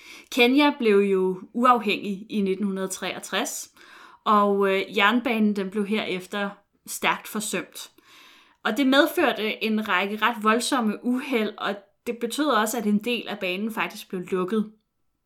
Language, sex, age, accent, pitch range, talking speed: Danish, female, 20-39, native, 185-230 Hz, 125 wpm